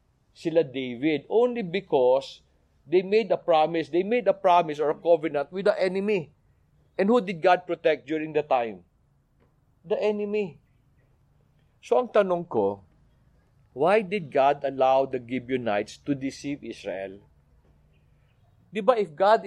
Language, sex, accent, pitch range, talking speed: English, male, Filipino, 125-185 Hz, 135 wpm